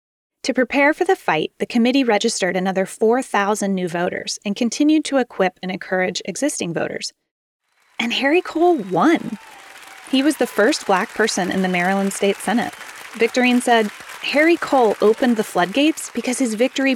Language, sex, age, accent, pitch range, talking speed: English, female, 20-39, American, 200-280 Hz, 160 wpm